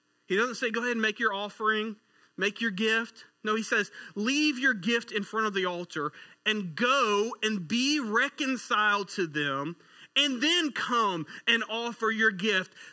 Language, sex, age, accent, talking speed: English, male, 30-49, American, 170 wpm